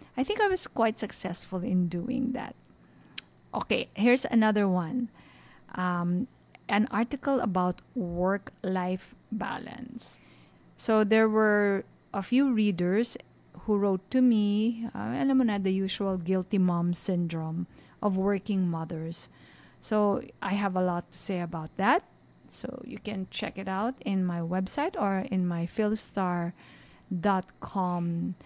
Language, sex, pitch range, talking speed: English, female, 175-225 Hz, 125 wpm